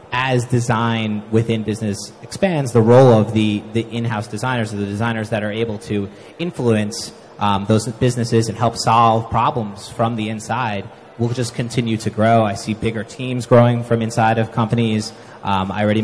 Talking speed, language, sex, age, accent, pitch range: 175 wpm, English, male, 30-49, American, 105-120 Hz